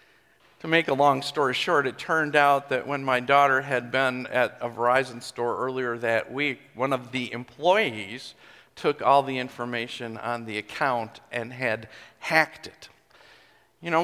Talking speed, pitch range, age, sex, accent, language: 165 wpm, 135-180 Hz, 50-69, male, American, English